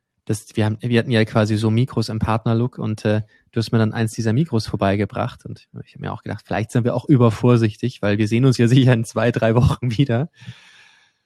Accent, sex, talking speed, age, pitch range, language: German, male, 220 wpm, 20-39, 110-130 Hz, German